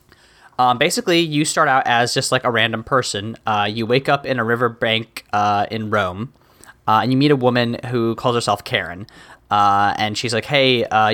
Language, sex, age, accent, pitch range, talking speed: English, male, 10-29, American, 105-125 Hz, 200 wpm